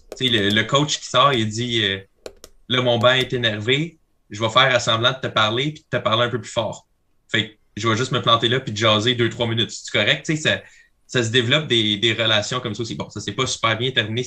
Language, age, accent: French, 20-39, Canadian